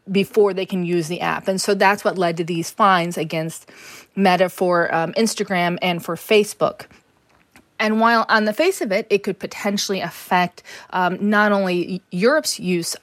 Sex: female